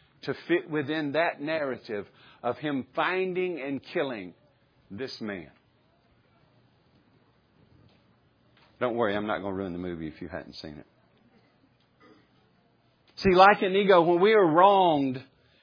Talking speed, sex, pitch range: 135 wpm, male, 135-195 Hz